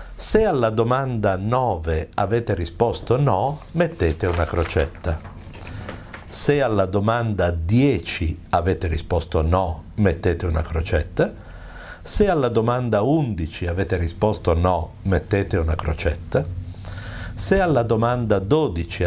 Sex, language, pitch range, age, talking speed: male, Italian, 85-110 Hz, 60-79, 105 wpm